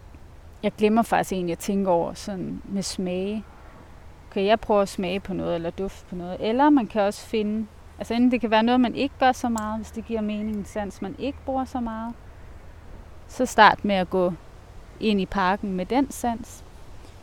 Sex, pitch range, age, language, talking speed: female, 190-230 Hz, 30-49, Danish, 200 wpm